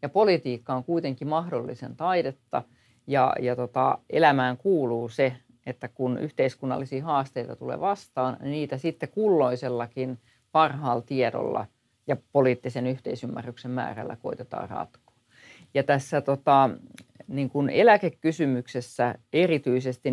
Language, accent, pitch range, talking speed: Finnish, native, 125-155 Hz, 110 wpm